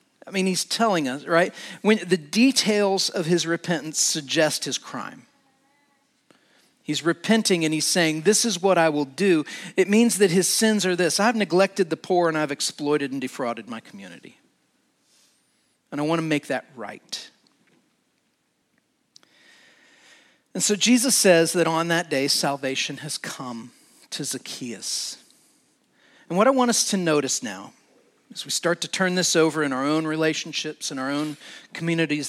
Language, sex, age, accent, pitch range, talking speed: English, male, 40-59, American, 155-240 Hz, 160 wpm